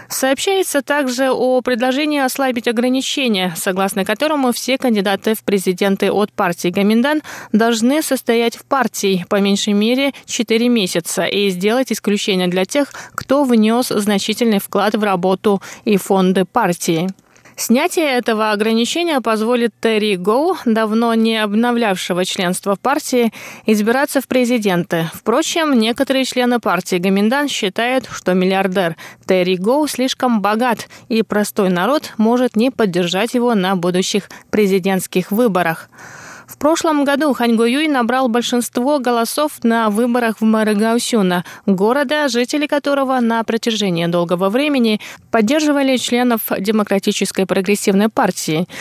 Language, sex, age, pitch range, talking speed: Russian, female, 20-39, 195-255 Hz, 120 wpm